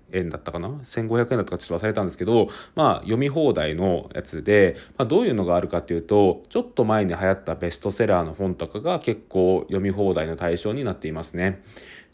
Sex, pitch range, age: male, 90-120 Hz, 20-39